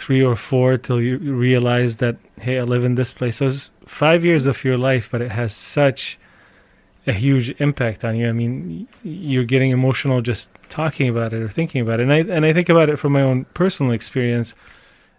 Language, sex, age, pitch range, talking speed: English, male, 30-49, 120-140 Hz, 215 wpm